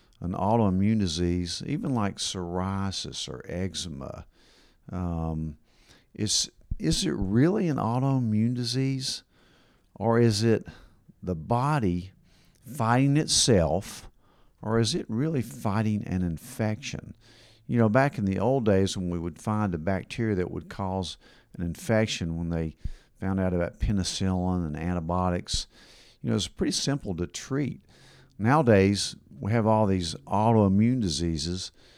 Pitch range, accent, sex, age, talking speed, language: 85-110 Hz, American, male, 50-69, 130 wpm, English